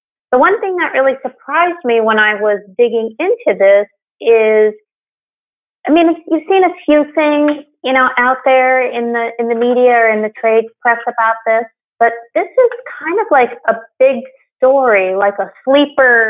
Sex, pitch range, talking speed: female, 230-295 Hz, 180 wpm